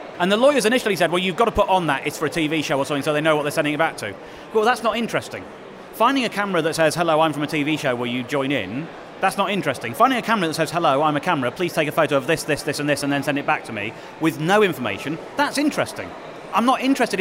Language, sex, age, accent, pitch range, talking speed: English, male, 30-49, British, 150-205 Hz, 295 wpm